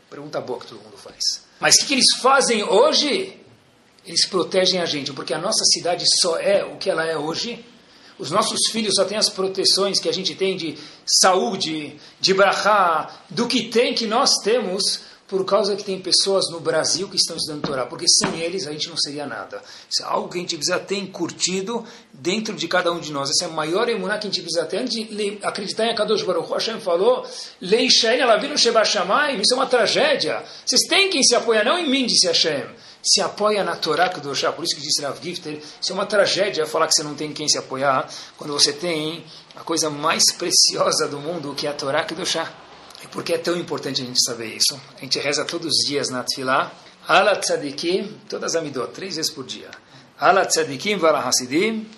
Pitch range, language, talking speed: 155-220 Hz, Portuguese, 220 wpm